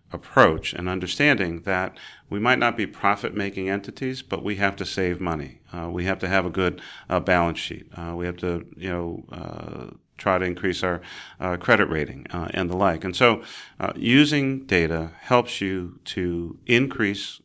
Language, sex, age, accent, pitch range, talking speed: English, male, 40-59, American, 85-105 Hz, 180 wpm